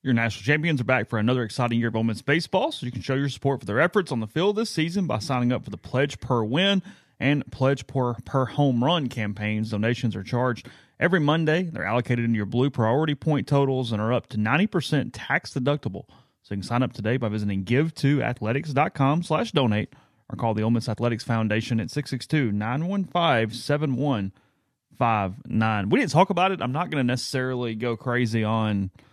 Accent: American